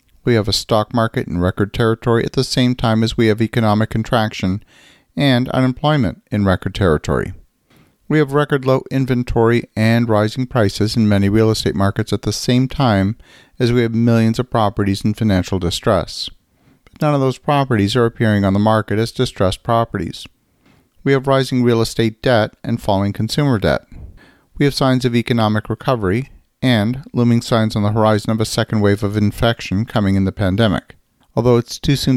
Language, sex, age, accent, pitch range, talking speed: English, male, 50-69, American, 105-125 Hz, 180 wpm